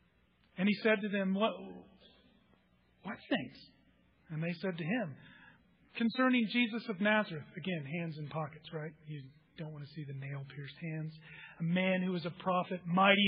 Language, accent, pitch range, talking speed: English, American, 160-215 Hz, 170 wpm